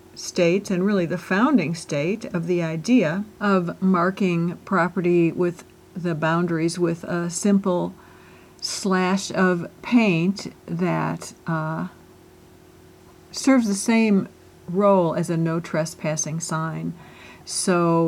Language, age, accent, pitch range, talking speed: English, 50-69, American, 175-200 Hz, 110 wpm